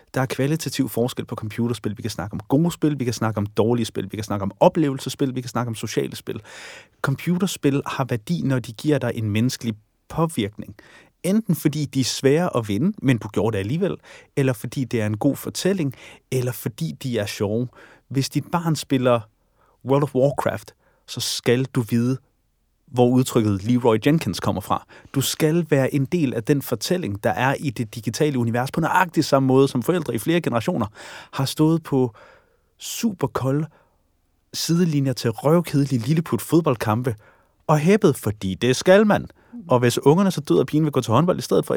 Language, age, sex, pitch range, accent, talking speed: Danish, 30-49, male, 115-155 Hz, native, 190 wpm